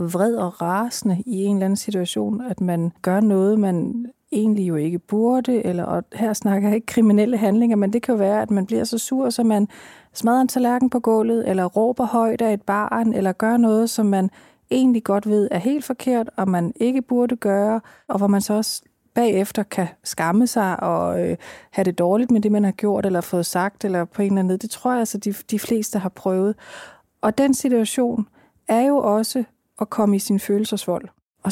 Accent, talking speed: native, 215 wpm